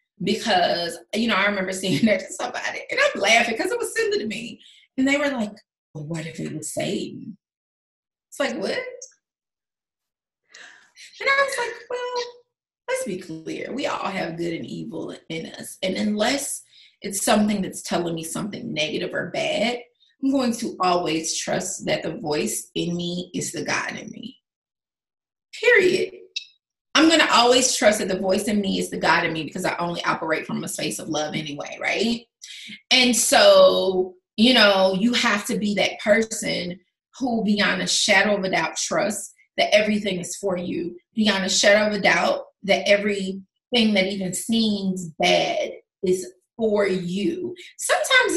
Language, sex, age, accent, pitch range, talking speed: English, female, 20-39, American, 190-275 Hz, 170 wpm